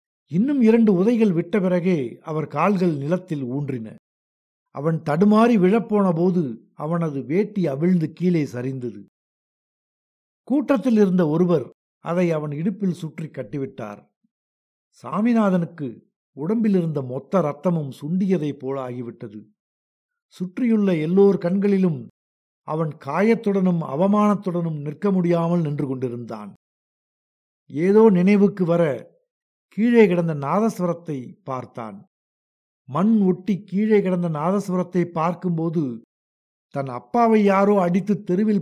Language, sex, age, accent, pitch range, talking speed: Tamil, male, 50-69, native, 140-195 Hz, 90 wpm